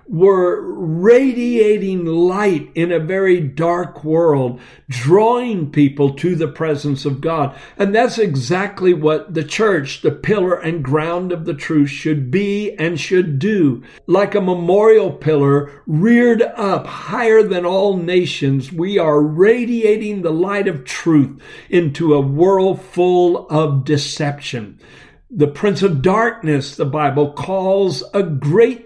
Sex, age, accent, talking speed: male, 60-79, American, 135 wpm